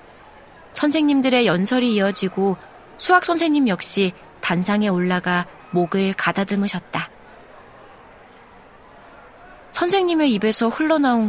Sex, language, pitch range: female, Korean, 190-265 Hz